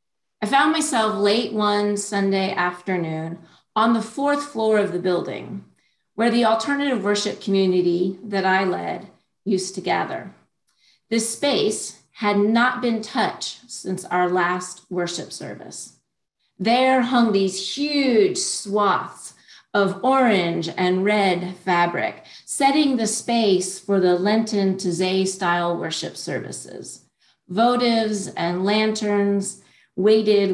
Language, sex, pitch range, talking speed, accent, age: English, female, 180-225 Hz, 120 wpm, American, 40-59